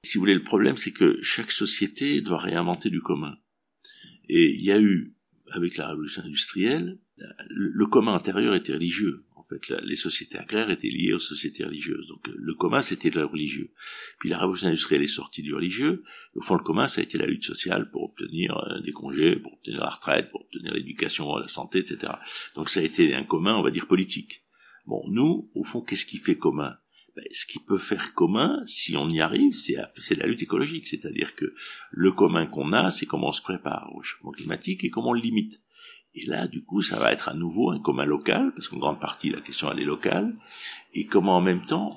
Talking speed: 220 wpm